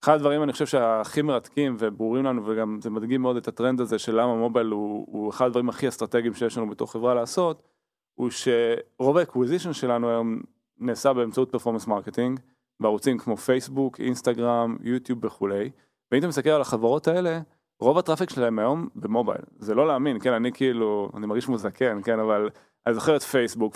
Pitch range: 110-135 Hz